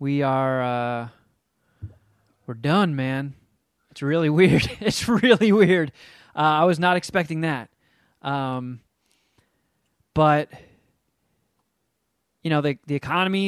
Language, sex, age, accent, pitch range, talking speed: English, male, 20-39, American, 140-180 Hz, 110 wpm